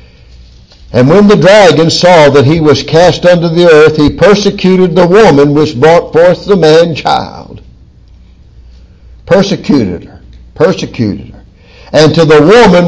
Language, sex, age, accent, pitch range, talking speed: English, male, 60-79, American, 125-185 Hz, 135 wpm